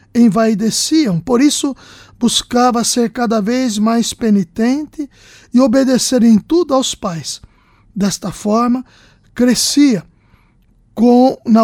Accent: Brazilian